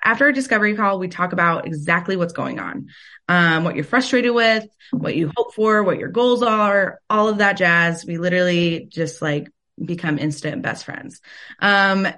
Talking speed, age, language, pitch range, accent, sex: 180 wpm, 20-39, English, 165-200 Hz, American, female